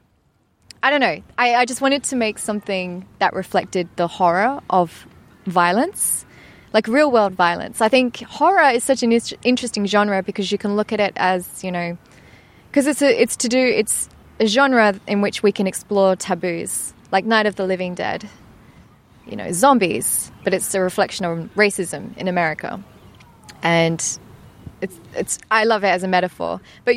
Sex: female